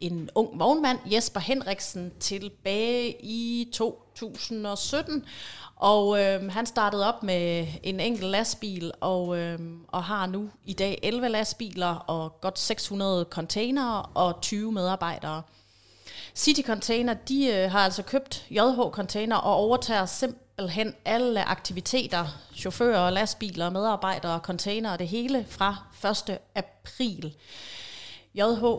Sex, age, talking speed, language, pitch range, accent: female, 30-49, 120 wpm, Danish, 175-215 Hz, native